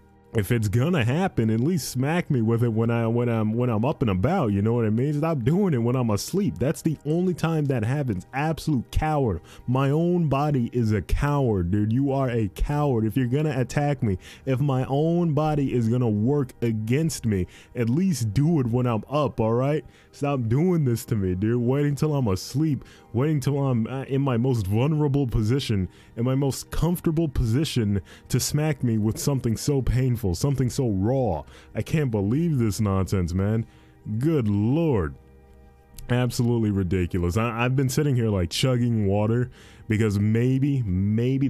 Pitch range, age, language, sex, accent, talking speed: 95-130 Hz, 20-39, English, male, American, 180 wpm